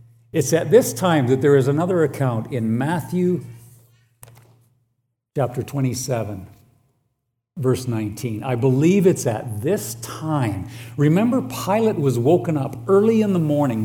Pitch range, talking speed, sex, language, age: 115-140 Hz, 130 wpm, male, English, 60-79